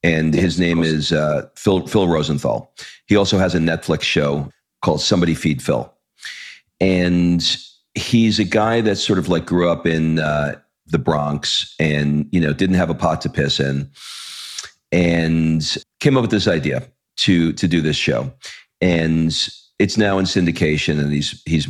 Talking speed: 170 wpm